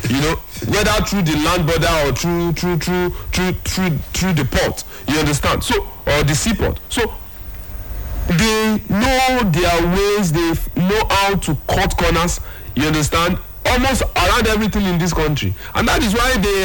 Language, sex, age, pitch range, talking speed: English, male, 50-69, 125-185 Hz, 165 wpm